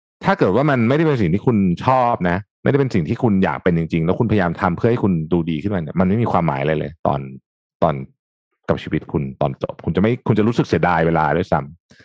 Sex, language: male, Thai